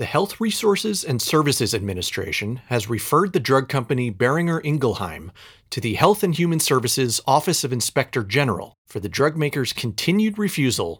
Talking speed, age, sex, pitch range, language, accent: 155 wpm, 40-59, male, 110-155 Hz, English, American